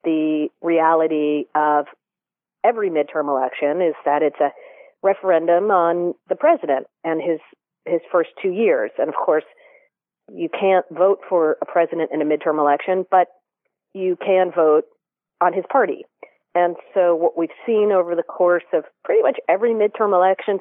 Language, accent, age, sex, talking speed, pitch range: English, American, 40-59, female, 155 wpm, 160-215 Hz